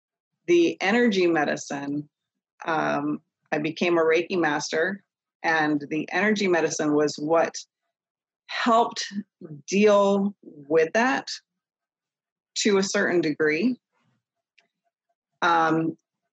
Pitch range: 160-200 Hz